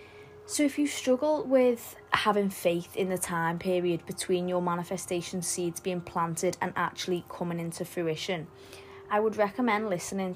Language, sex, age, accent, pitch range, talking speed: English, female, 20-39, British, 165-195 Hz, 150 wpm